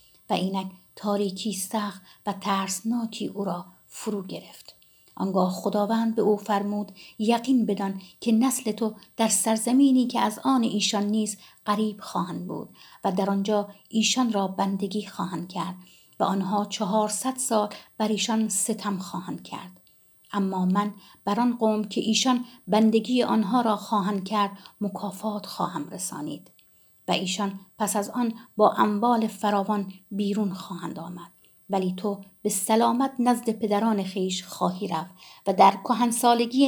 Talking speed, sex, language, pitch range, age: 135 wpm, female, Persian, 195-230 Hz, 50-69